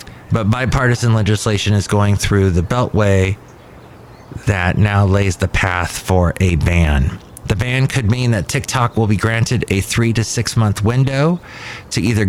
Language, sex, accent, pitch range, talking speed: English, male, American, 95-120 Hz, 160 wpm